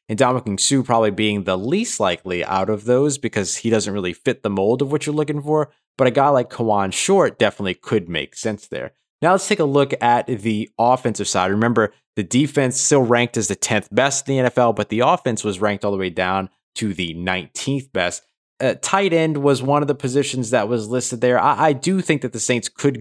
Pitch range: 100-125 Hz